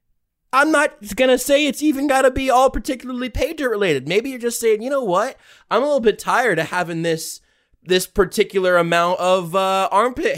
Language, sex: English, male